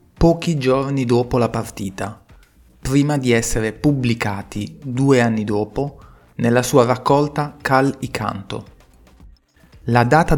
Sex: male